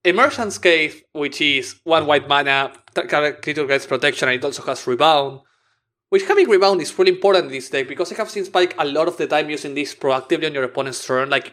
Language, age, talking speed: English, 20-39, 220 wpm